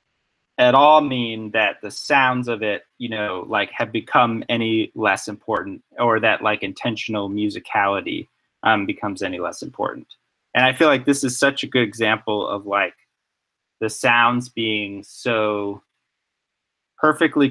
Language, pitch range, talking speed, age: English, 105-135 Hz, 145 wpm, 20-39